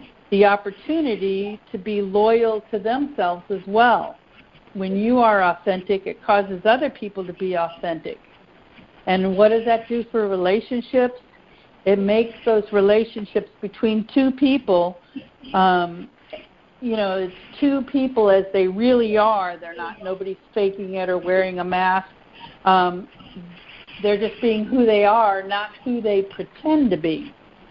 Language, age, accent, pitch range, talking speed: English, 60-79, American, 190-225 Hz, 145 wpm